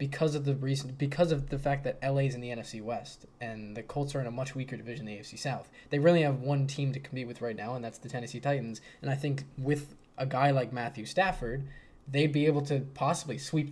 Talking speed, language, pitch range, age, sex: 255 wpm, English, 120-145 Hz, 10-29, male